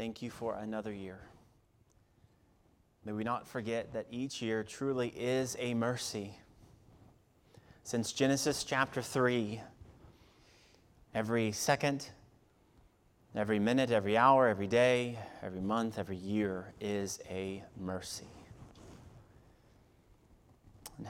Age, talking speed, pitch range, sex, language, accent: 30-49, 100 wpm, 95-110 Hz, male, English, American